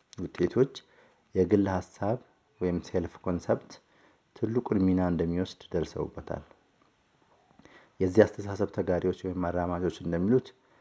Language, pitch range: Amharic, 90-105 Hz